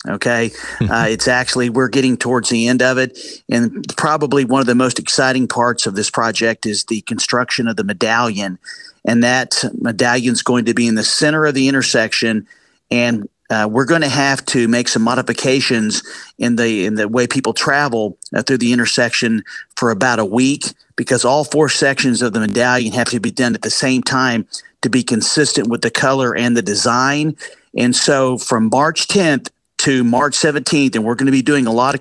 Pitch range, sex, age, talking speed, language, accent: 120-140 Hz, male, 50-69, 200 wpm, English, American